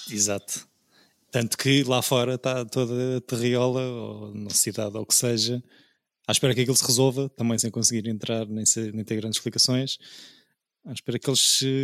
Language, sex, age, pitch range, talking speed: Portuguese, male, 20-39, 110-125 Hz, 165 wpm